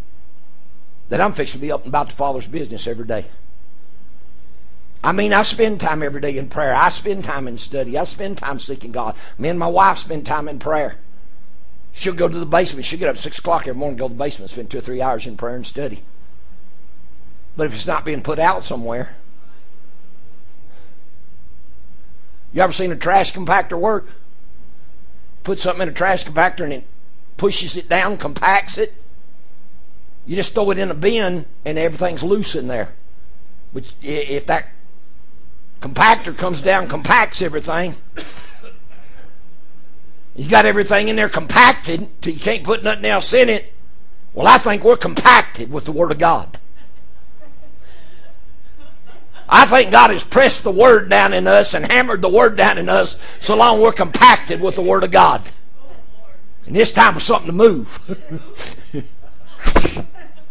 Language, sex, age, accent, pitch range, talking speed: English, male, 60-79, American, 115-190 Hz, 170 wpm